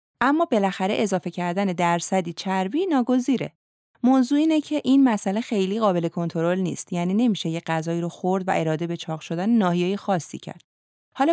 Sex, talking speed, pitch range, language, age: female, 160 wpm, 170-225 Hz, Persian, 30-49